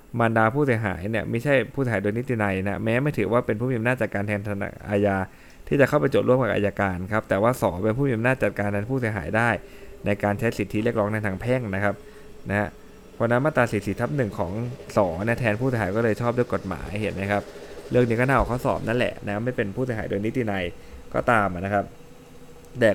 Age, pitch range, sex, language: 20-39, 95-120 Hz, male, Thai